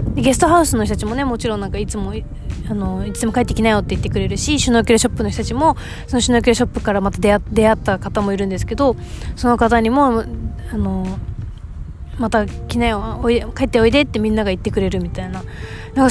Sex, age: female, 20-39